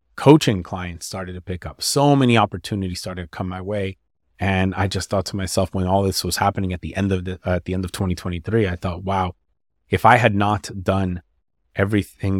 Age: 30-49